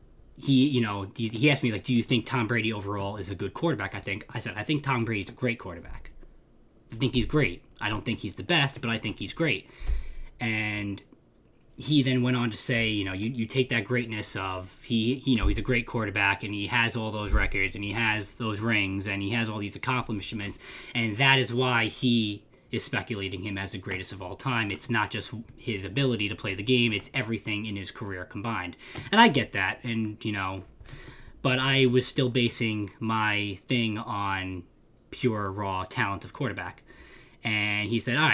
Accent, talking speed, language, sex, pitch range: American, 215 wpm, English, male, 100-120 Hz